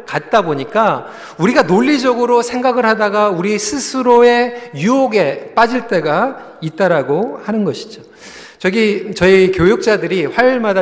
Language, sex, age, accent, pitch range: Korean, male, 40-59, native, 185-260 Hz